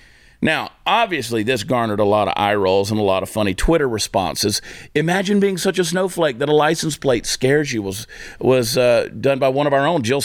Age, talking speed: 50-69, 215 wpm